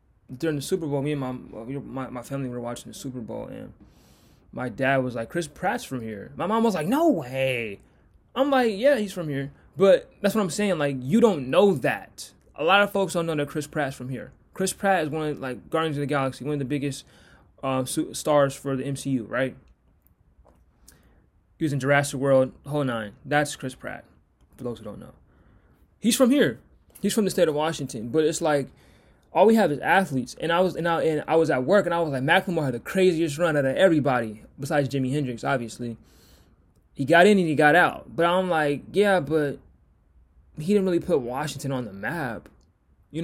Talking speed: 215 wpm